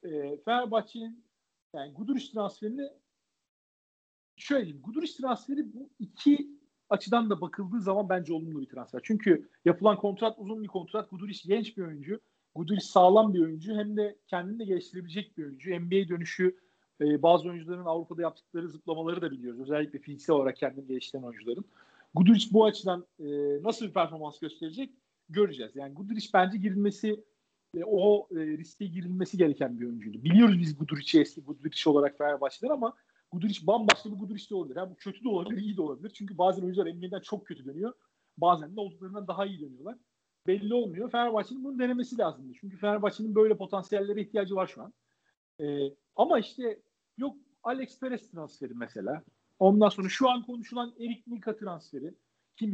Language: Turkish